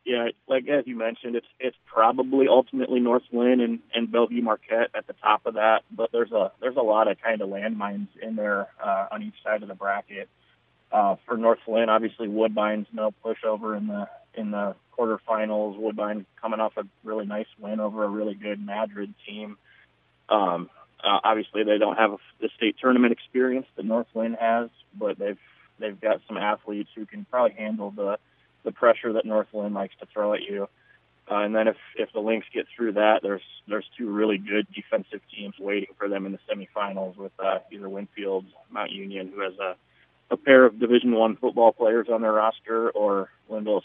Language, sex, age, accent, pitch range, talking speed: English, male, 30-49, American, 100-115 Hz, 190 wpm